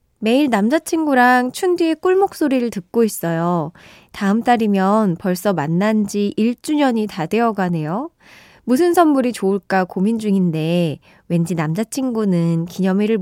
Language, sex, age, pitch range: Korean, female, 20-39, 180-265 Hz